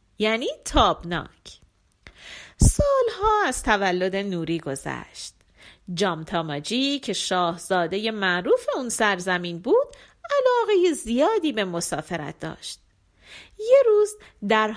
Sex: female